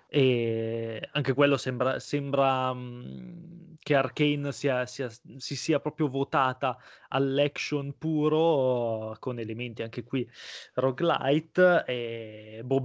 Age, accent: 20-39, native